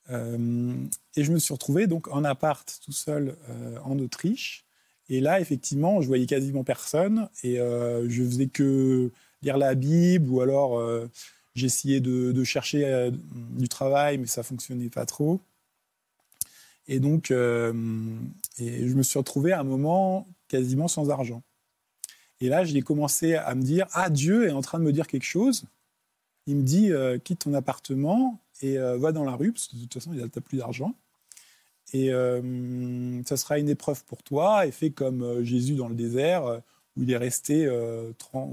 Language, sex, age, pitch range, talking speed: French, male, 20-39, 125-150 Hz, 185 wpm